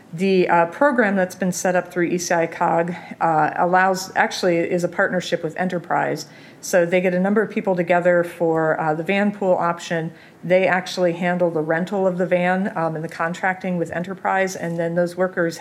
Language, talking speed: English, 190 wpm